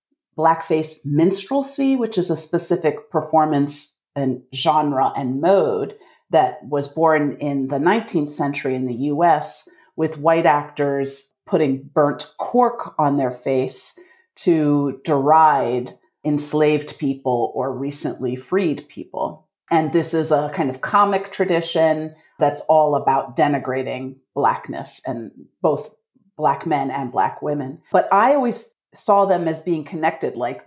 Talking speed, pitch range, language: 130 wpm, 145-195 Hz, English